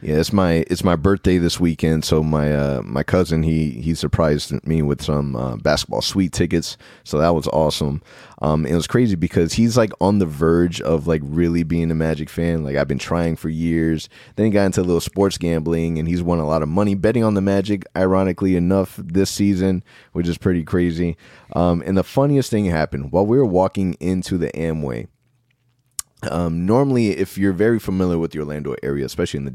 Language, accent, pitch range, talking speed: English, American, 80-100 Hz, 210 wpm